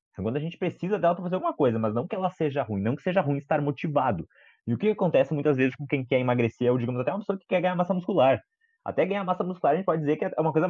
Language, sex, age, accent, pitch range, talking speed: Portuguese, male, 20-39, Brazilian, 125-170 Hz, 305 wpm